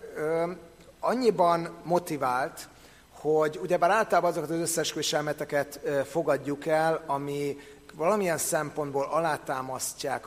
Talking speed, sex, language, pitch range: 90 wpm, male, Hungarian, 140-165 Hz